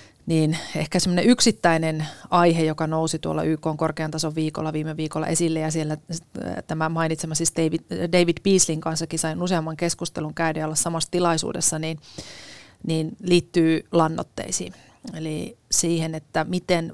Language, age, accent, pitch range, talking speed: Finnish, 30-49, native, 155-175 Hz, 140 wpm